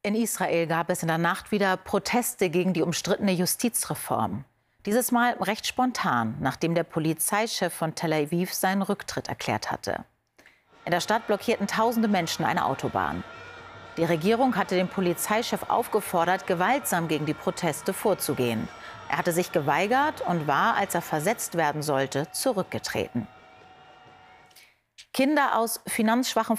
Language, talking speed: German, 140 wpm